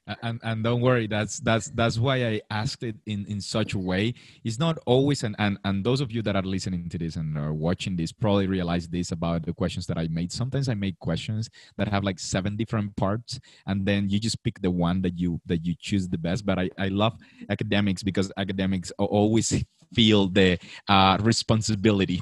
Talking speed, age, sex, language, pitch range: 215 wpm, 30-49, male, English, 95-120 Hz